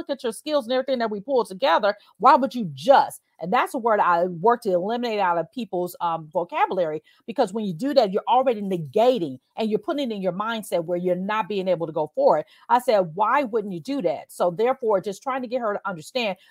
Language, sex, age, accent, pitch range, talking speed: English, female, 40-59, American, 205-280 Hz, 240 wpm